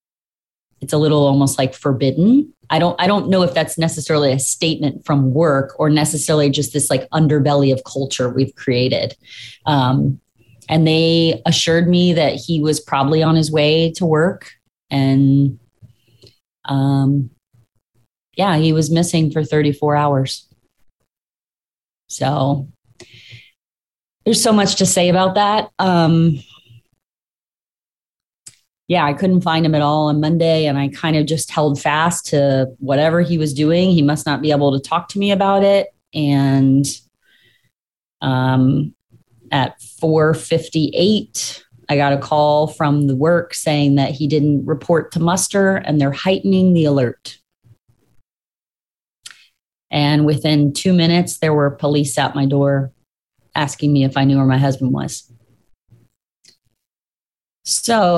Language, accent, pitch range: English, American, 135-165 Hz